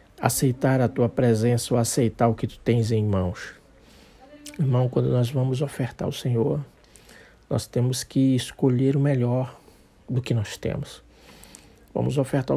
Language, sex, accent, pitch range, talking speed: Portuguese, male, Brazilian, 115-135 Hz, 150 wpm